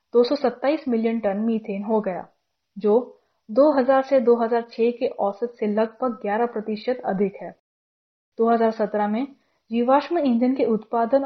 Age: 10-29